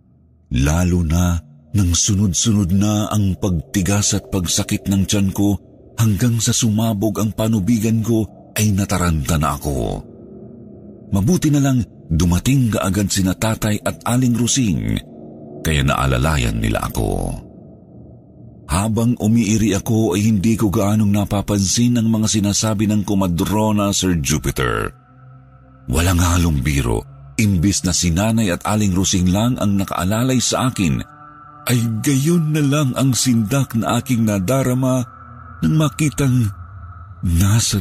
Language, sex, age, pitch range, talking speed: Filipino, male, 50-69, 95-125 Hz, 120 wpm